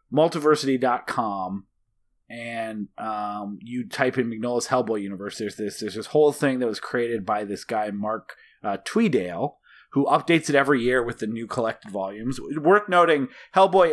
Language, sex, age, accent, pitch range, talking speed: English, male, 30-49, American, 110-145 Hz, 160 wpm